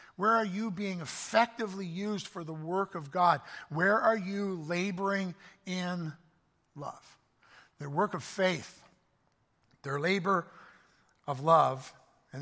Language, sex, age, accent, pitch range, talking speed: English, male, 50-69, American, 145-190 Hz, 125 wpm